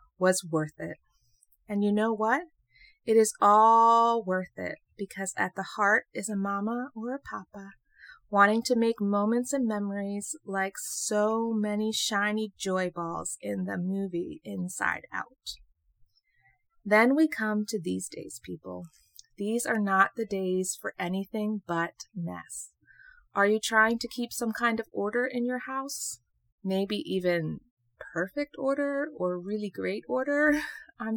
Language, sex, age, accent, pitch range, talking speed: English, female, 30-49, American, 185-230 Hz, 145 wpm